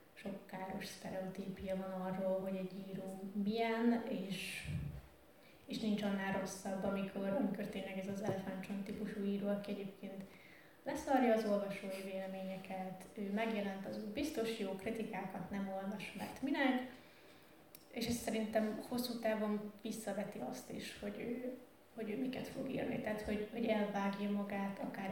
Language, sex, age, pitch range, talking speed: Hungarian, female, 20-39, 195-225 Hz, 140 wpm